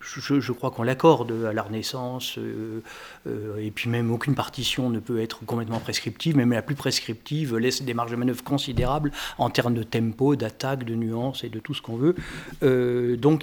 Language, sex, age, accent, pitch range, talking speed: French, male, 50-69, French, 125-155 Hz, 200 wpm